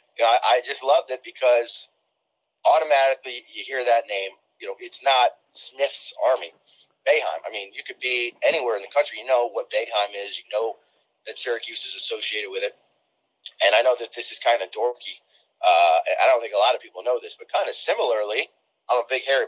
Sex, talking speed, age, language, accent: male, 215 wpm, 30-49, English, American